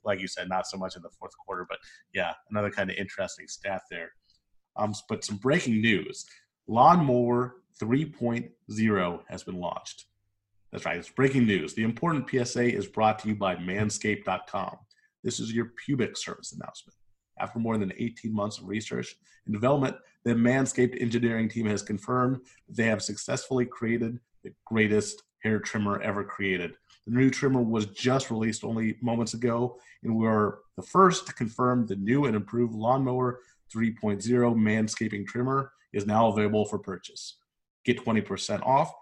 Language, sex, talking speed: English, male, 160 wpm